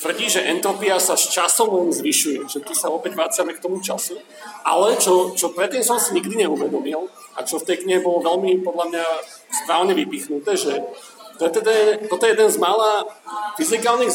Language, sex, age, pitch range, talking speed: Slovak, male, 40-59, 180-285 Hz, 180 wpm